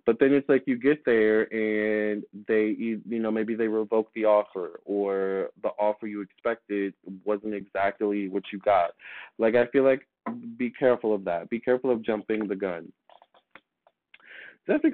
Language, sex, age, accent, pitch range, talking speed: English, male, 20-39, American, 105-130 Hz, 165 wpm